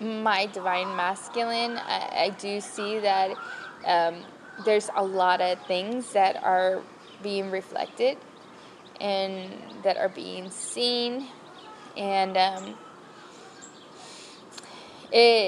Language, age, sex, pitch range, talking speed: English, 10-29, female, 195-235 Hz, 100 wpm